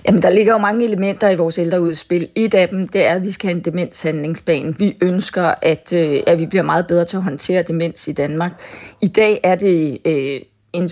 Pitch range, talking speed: 165-190 Hz, 210 wpm